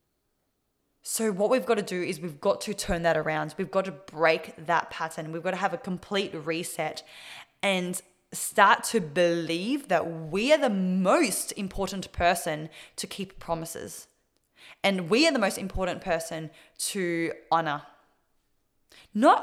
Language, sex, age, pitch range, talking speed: English, female, 20-39, 170-210 Hz, 155 wpm